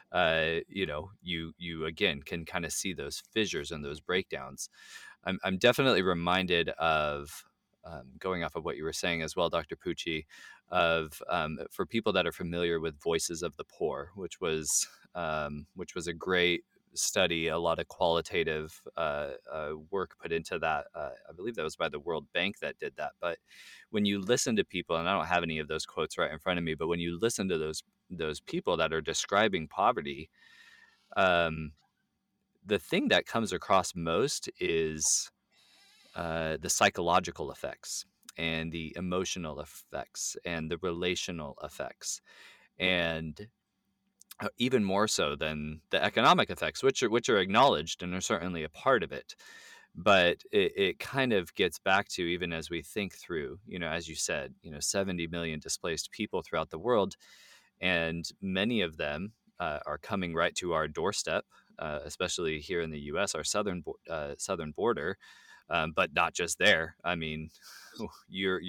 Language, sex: English, male